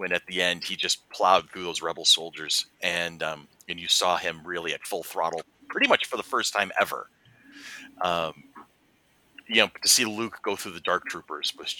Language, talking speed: English, 205 wpm